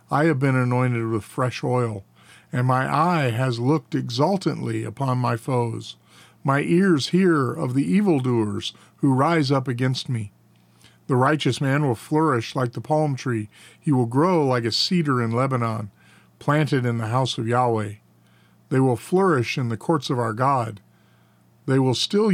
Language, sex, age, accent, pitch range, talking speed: English, male, 50-69, American, 115-150 Hz, 165 wpm